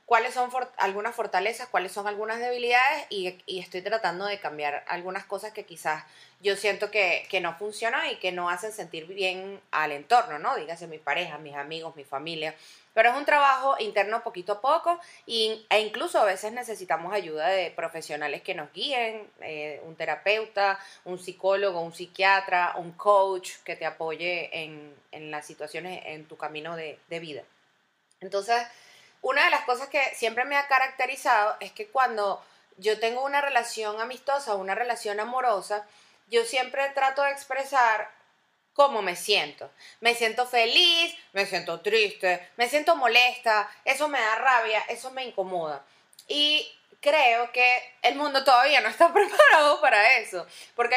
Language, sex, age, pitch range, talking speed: Spanish, female, 30-49, 180-250 Hz, 160 wpm